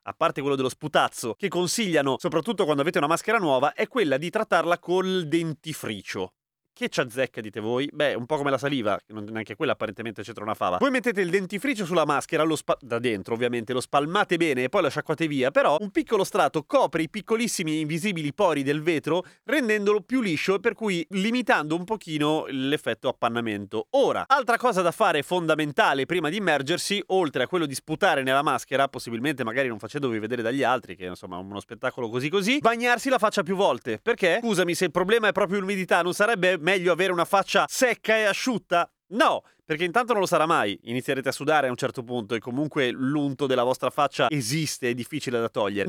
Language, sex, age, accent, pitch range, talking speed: Italian, male, 30-49, native, 135-205 Hz, 205 wpm